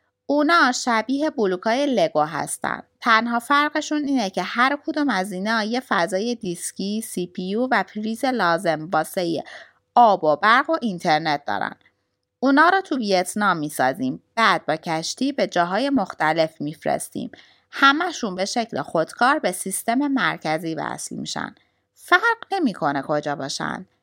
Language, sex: Persian, female